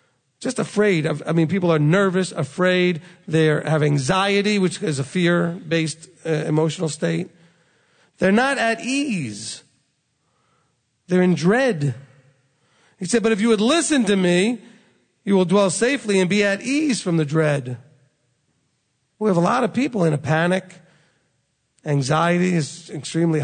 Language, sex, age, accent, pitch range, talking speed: English, male, 40-59, American, 155-190 Hz, 145 wpm